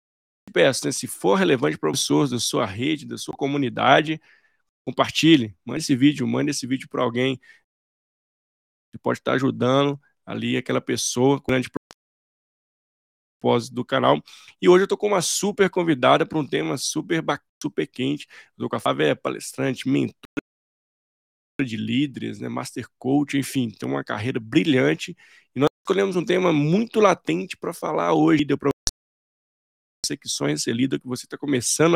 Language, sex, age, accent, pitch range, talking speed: Portuguese, male, 20-39, Brazilian, 125-150 Hz, 160 wpm